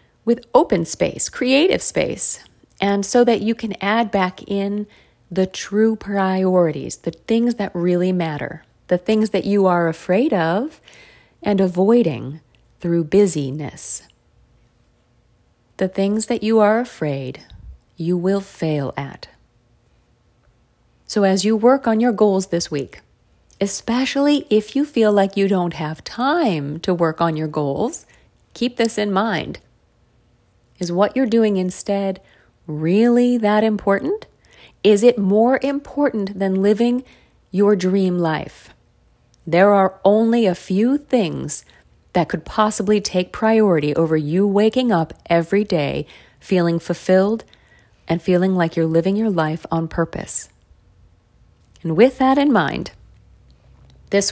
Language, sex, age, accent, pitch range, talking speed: English, female, 40-59, American, 165-220 Hz, 135 wpm